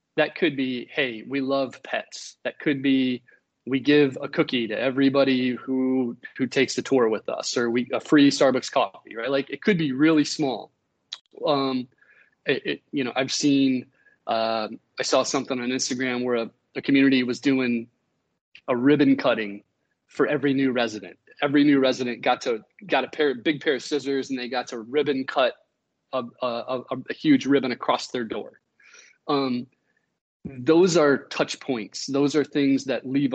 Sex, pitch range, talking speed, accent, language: male, 120-140 Hz, 180 wpm, American, English